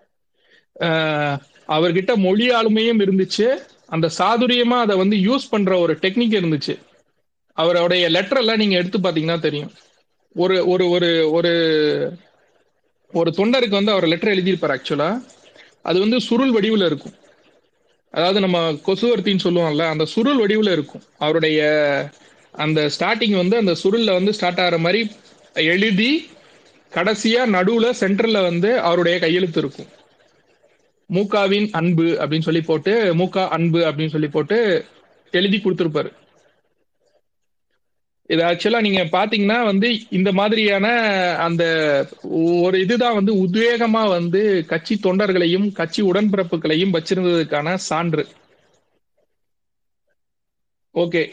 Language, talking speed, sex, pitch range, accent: Tamil, 100 wpm, male, 165-215 Hz, native